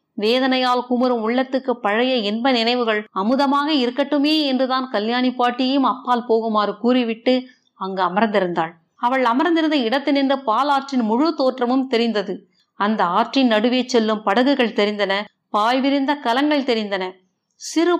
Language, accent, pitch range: Tamil, native, 220-275 Hz